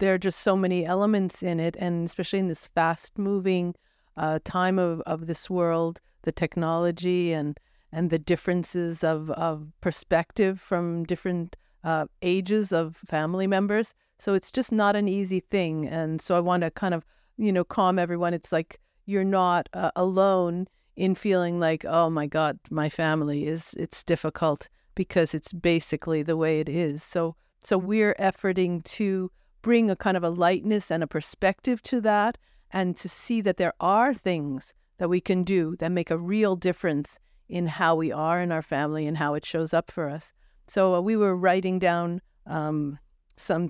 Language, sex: English, female